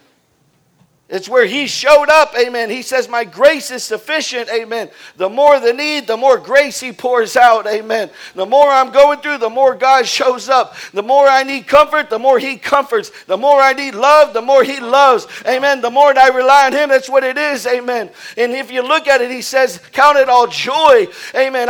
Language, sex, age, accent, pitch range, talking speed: English, male, 50-69, American, 235-285 Hz, 215 wpm